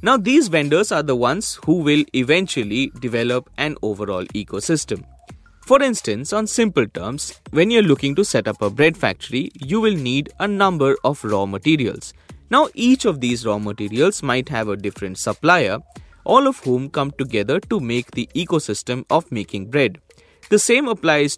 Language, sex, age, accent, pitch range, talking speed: English, male, 20-39, Indian, 110-180 Hz, 170 wpm